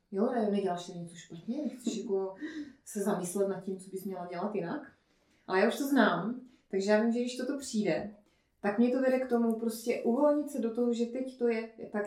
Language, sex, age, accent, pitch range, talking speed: Czech, female, 30-49, native, 185-230 Hz, 220 wpm